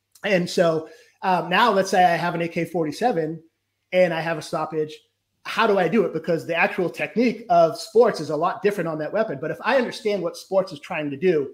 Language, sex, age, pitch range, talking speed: English, male, 30-49, 150-185 Hz, 225 wpm